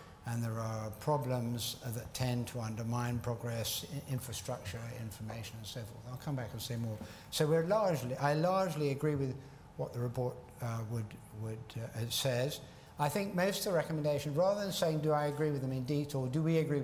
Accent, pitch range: British, 115-145 Hz